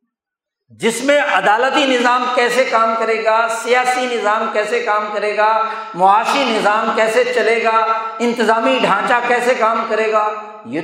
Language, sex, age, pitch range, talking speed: Urdu, male, 60-79, 225-310 Hz, 145 wpm